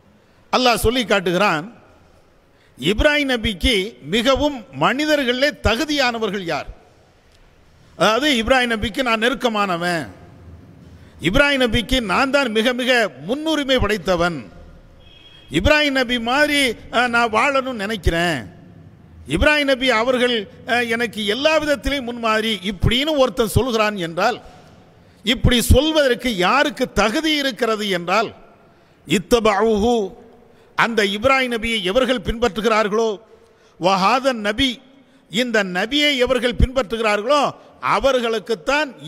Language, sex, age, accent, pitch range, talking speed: English, male, 50-69, Indian, 215-270 Hz, 85 wpm